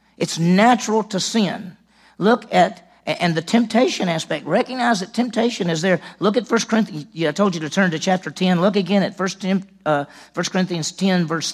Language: English